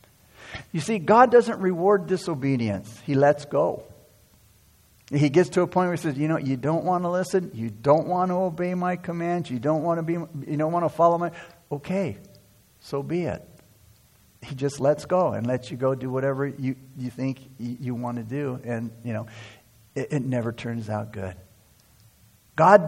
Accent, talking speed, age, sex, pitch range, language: American, 190 wpm, 50-69, male, 130-180 Hz, English